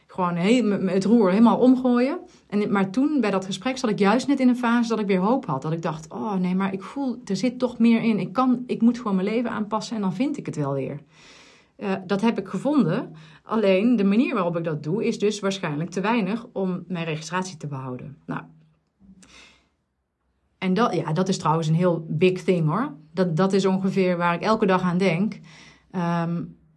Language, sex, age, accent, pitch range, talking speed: Dutch, female, 30-49, Dutch, 165-215 Hz, 215 wpm